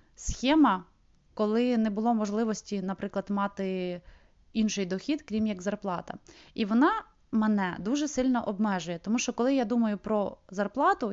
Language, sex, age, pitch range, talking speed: Ukrainian, female, 20-39, 205-245 Hz, 135 wpm